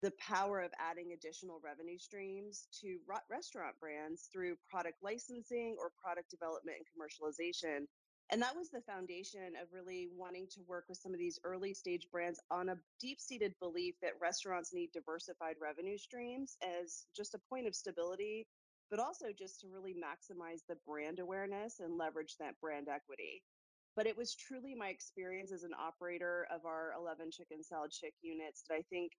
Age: 30-49